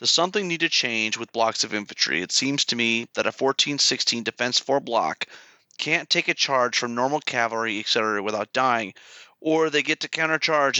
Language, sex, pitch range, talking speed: English, male, 120-150 Hz, 190 wpm